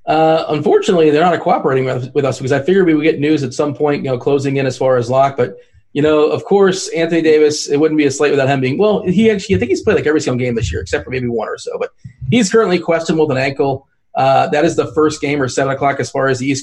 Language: English